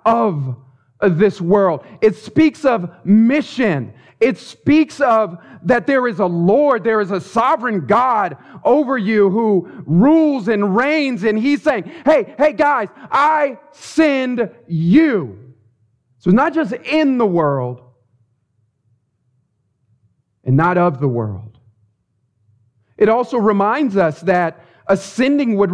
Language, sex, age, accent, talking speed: English, male, 40-59, American, 125 wpm